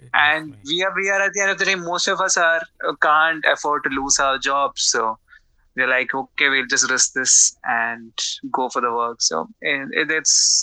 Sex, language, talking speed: male, English, 215 wpm